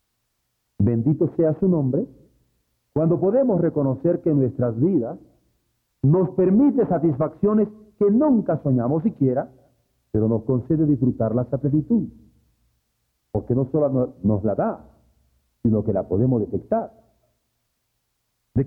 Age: 50-69